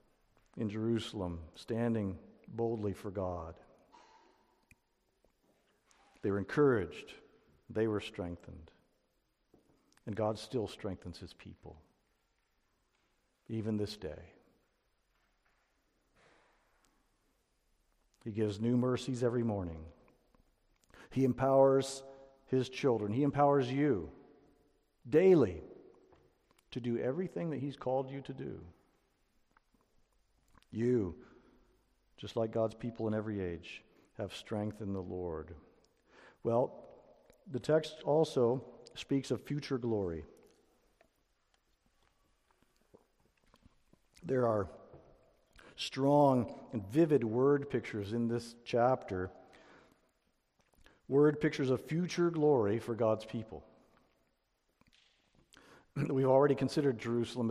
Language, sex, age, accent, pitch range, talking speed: English, male, 50-69, American, 105-135 Hz, 90 wpm